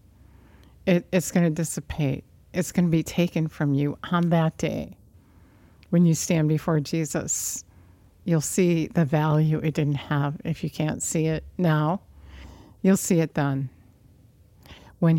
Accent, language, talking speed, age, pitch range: American, English, 145 wpm, 50-69, 100-165 Hz